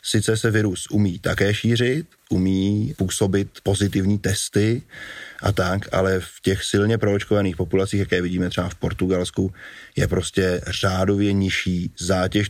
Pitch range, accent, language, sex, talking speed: 95-105 Hz, native, Czech, male, 135 wpm